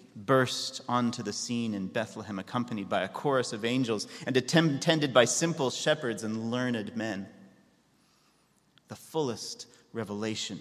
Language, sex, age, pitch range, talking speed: English, male, 30-49, 115-170 Hz, 130 wpm